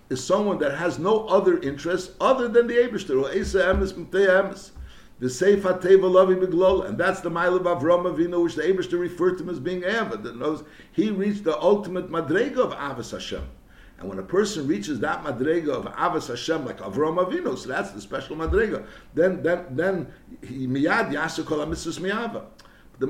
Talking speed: 160 wpm